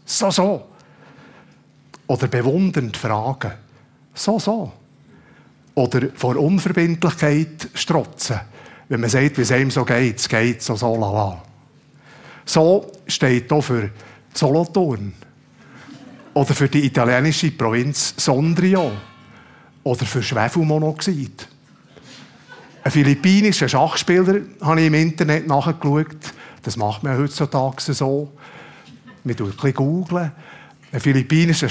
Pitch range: 125-160 Hz